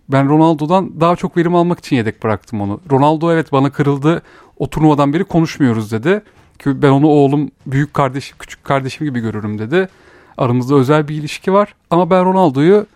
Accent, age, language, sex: native, 40-59, Turkish, male